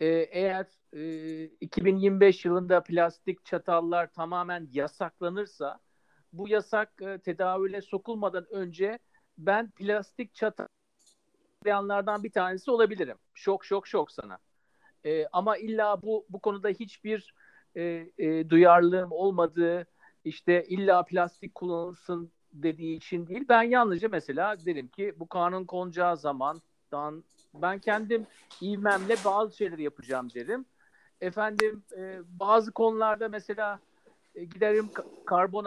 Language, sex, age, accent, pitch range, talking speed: Turkish, male, 50-69, native, 175-225 Hz, 105 wpm